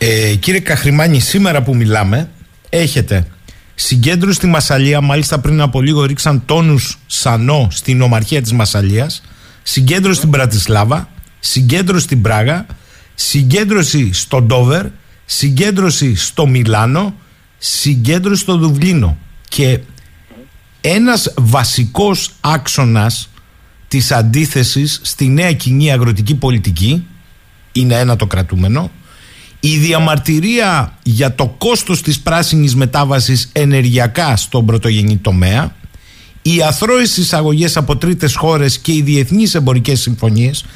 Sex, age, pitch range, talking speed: male, 50-69, 115-150 Hz, 110 wpm